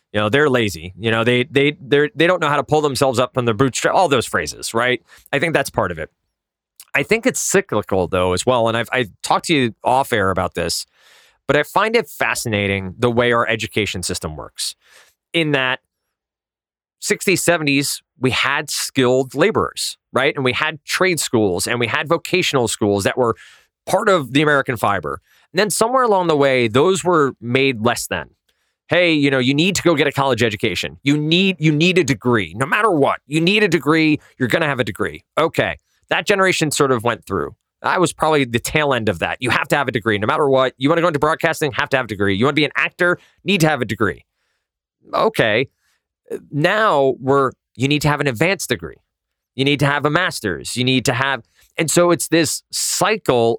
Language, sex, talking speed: English, male, 220 wpm